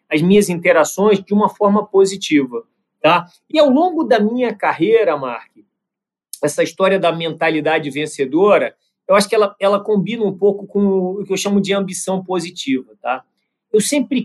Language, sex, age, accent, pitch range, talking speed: Portuguese, male, 40-59, Brazilian, 185-235 Hz, 155 wpm